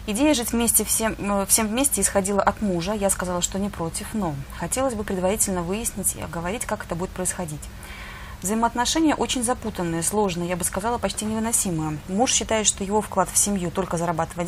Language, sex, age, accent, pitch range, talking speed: Russian, female, 30-49, native, 175-215 Hz, 180 wpm